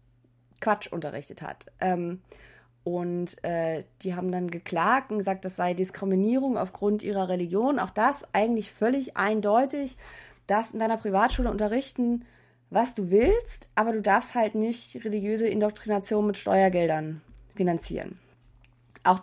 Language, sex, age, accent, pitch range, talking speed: German, female, 20-39, German, 175-215 Hz, 125 wpm